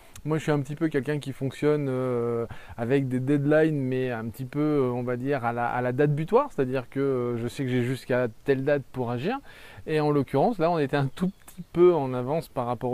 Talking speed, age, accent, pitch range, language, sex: 240 wpm, 20-39, French, 125-155 Hz, French, male